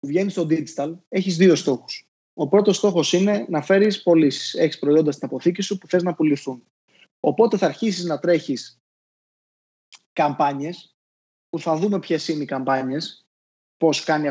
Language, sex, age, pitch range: Greek, male, 20-39, 145-205 Hz